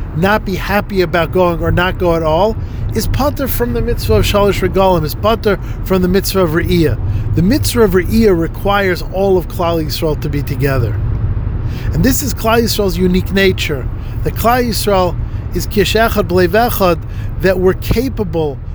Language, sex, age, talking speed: English, male, 50-69, 165 wpm